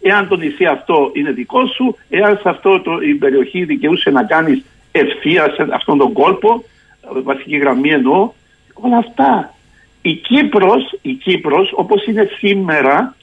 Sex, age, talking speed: male, 60-79, 145 wpm